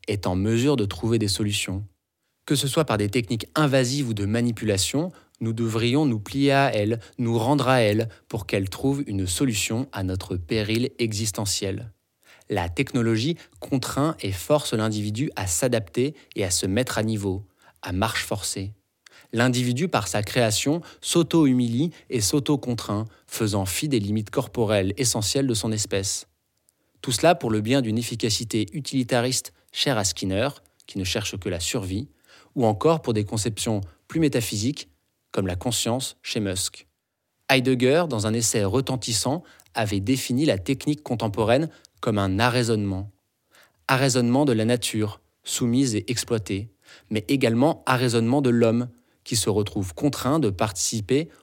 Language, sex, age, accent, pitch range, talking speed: French, male, 20-39, French, 105-130 Hz, 150 wpm